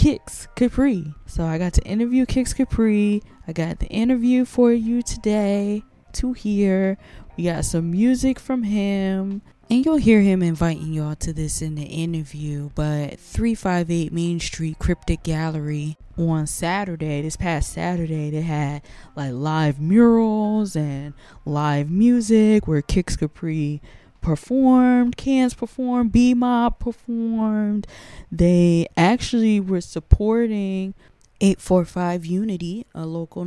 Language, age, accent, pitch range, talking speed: English, 20-39, American, 160-225 Hz, 125 wpm